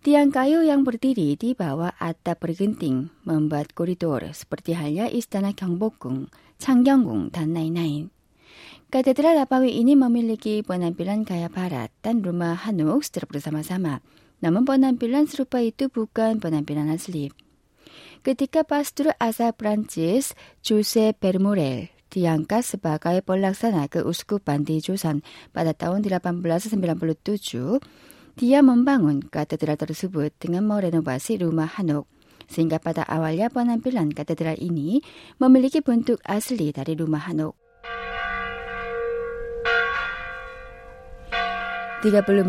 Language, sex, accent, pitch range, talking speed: Indonesian, female, Korean, 160-245 Hz, 100 wpm